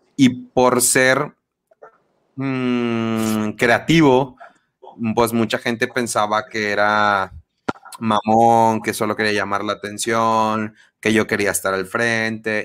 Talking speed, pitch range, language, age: 115 wpm, 110-125 Hz, Spanish, 30-49